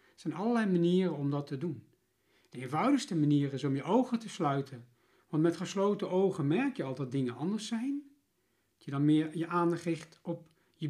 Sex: male